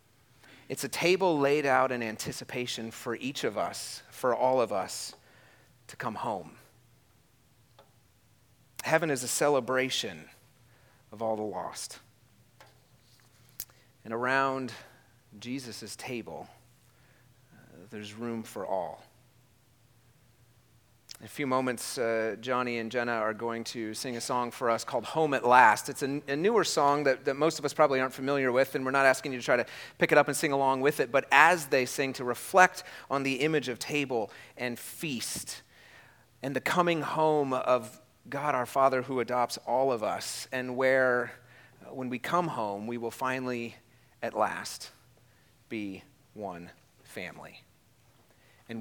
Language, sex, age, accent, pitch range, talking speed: English, male, 30-49, American, 115-135 Hz, 155 wpm